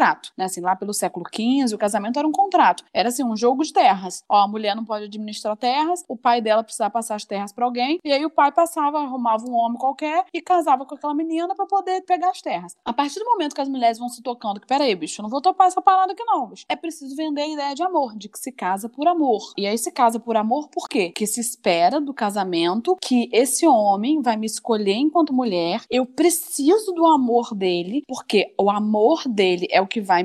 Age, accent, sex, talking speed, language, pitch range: 20-39, Brazilian, female, 240 wpm, Portuguese, 215-315 Hz